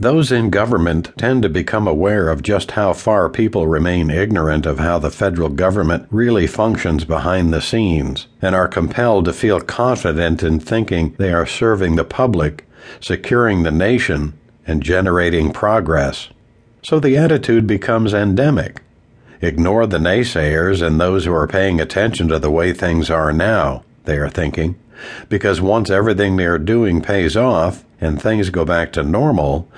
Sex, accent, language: male, American, English